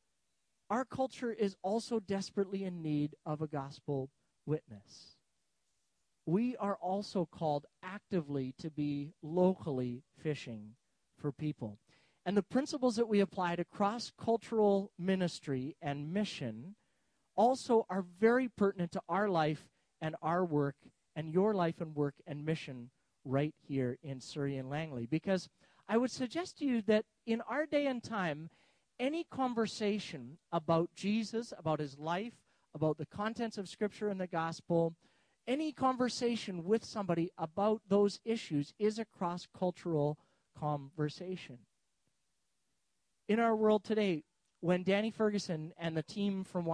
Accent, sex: American, male